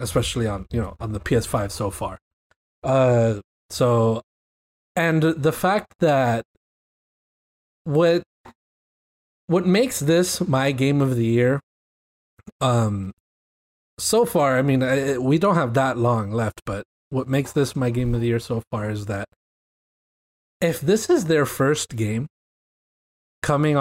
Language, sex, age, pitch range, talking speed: English, male, 20-39, 110-145 Hz, 140 wpm